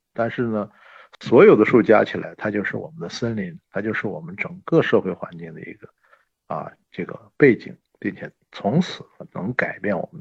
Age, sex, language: 50-69, male, Chinese